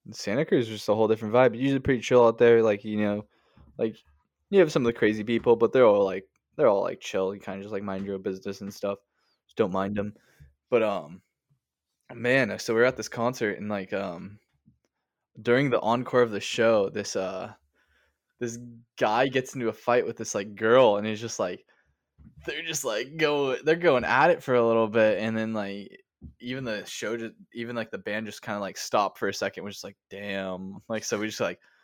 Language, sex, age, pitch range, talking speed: English, male, 10-29, 100-140 Hz, 225 wpm